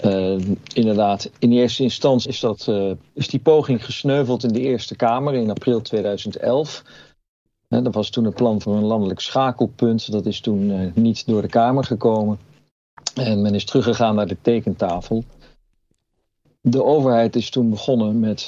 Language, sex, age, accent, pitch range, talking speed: Dutch, male, 50-69, Dutch, 105-125 Hz, 160 wpm